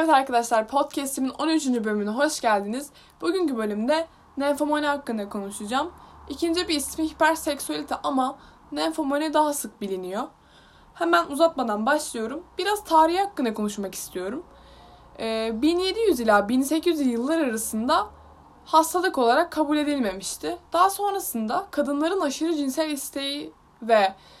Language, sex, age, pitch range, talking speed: Turkish, female, 10-29, 230-330 Hz, 110 wpm